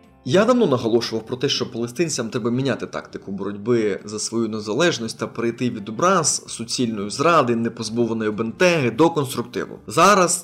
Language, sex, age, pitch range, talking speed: Ukrainian, male, 20-39, 115-145 Hz, 145 wpm